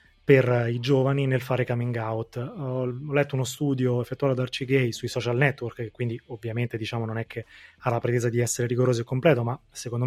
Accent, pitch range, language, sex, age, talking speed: native, 120-145 Hz, Italian, male, 20-39, 210 wpm